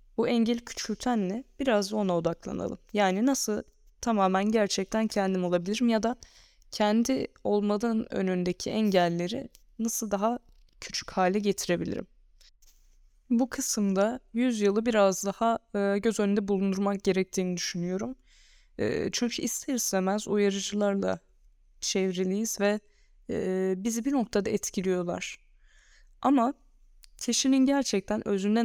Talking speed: 95 wpm